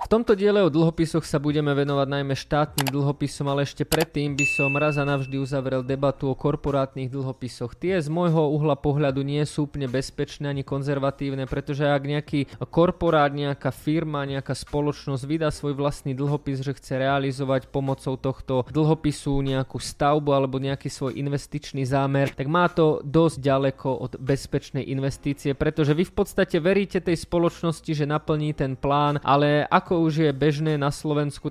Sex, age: male, 20-39